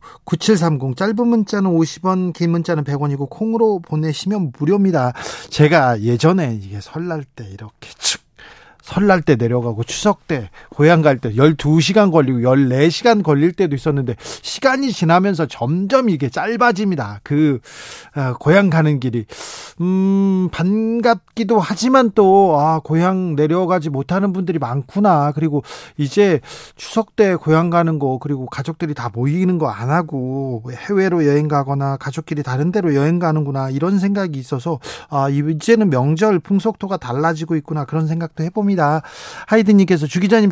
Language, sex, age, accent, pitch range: Korean, male, 40-59, native, 140-195 Hz